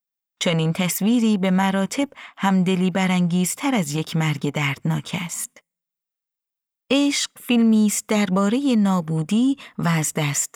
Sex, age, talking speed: female, 30-49, 115 wpm